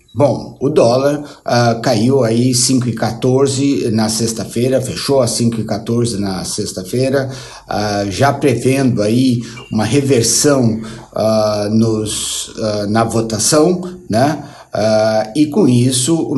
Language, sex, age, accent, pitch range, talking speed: Portuguese, male, 60-79, Brazilian, 115-135 Hz, 130 wpm